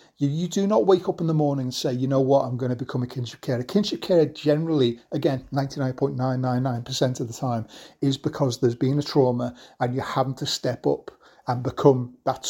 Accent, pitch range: British, 125-150 Hz